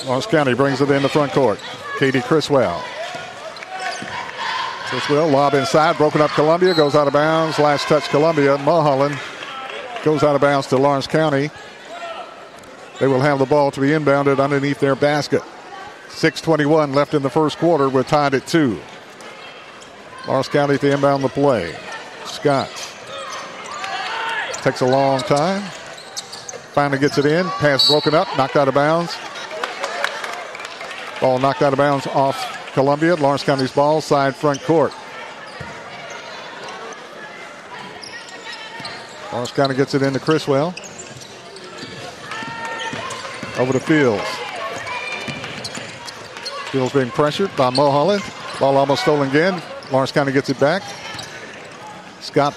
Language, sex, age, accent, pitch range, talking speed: English, male, 50-69, American, 140-160 Hz, 130 wpm